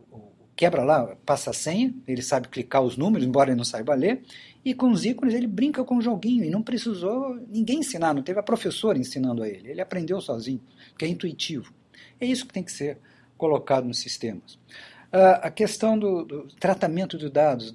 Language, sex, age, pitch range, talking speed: Portuguese, male, 50-69, 130-210 Hz, 195 wpm